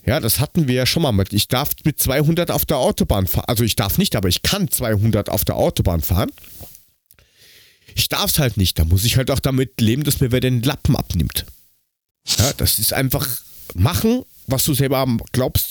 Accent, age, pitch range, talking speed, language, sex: German, 40-59, 100-150 Hz, 210 wpm, German, male